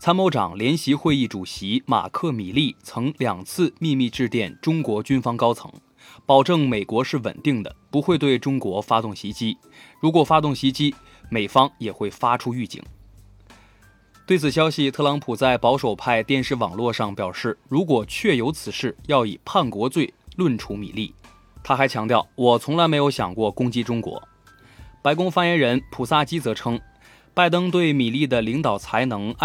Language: Chinese